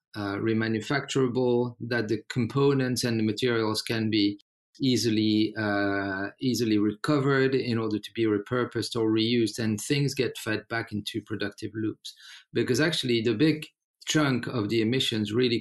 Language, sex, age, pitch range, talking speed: English, male, 40-59, 105-125 Hz, 145 wpm